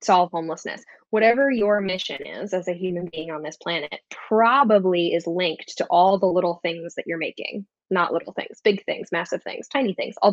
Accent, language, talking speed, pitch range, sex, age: American, English, 200 wpm, 175-220 Hz, female, 10-29